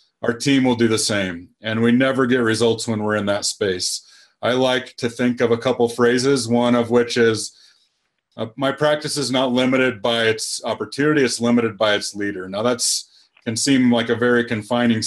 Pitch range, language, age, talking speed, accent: 110-125 Hz, English, 30-49, 195 wpm, American